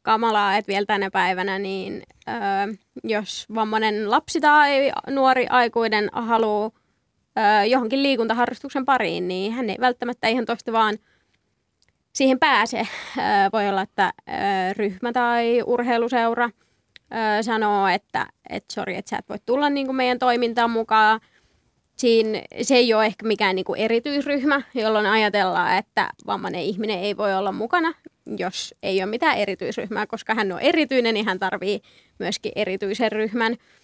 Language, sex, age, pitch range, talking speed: Finnish, female, 20-39, 210-240 Hz, 140 wpm